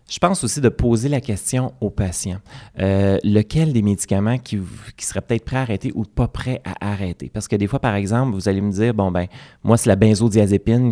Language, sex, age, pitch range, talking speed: French, male, 30-49, 95-115 Hz, 225 wpm